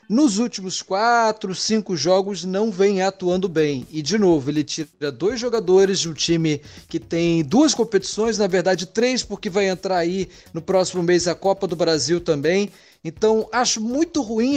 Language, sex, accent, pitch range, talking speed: Portuguese, male, Brazilian, 165-210 Hz, 175 wpm